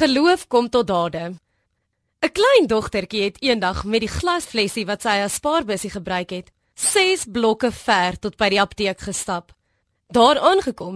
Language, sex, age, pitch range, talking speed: Dutch, female, 20-39, 185-255 Hz, 160 wpm